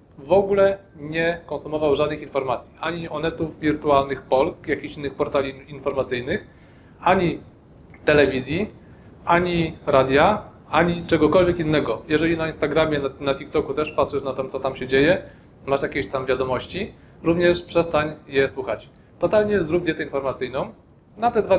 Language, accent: Polish, native